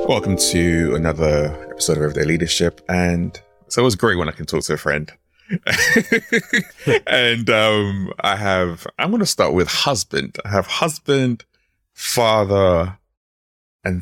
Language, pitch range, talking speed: English, 85-115 Hz, 145 wpm